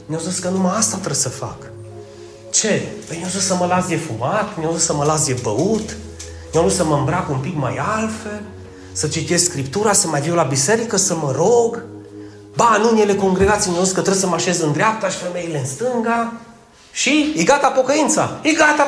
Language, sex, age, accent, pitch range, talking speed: Romanian, male, 30-49, native, 135-200 Hz, 215 wpm